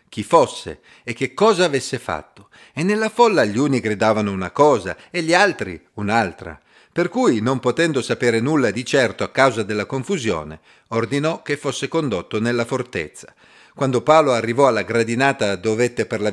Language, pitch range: Italian, 110-145 Hz